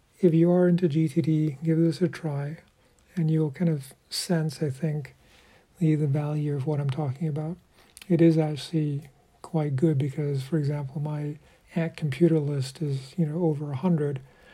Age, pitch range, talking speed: 50-69, 145-165 Hz, 175 wpm